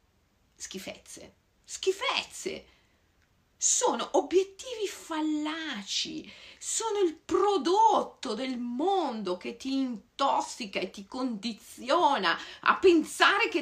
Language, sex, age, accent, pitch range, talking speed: Italian, female, 50-69, native, 220-365 Hz, 90 wpm